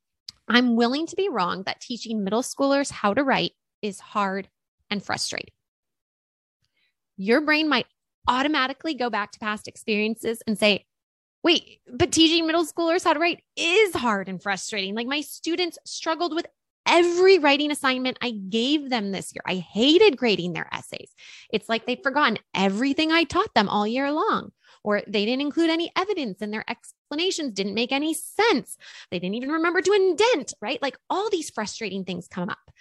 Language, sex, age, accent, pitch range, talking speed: English, female, 20-39, American, 210-315 Hz, 175 wpm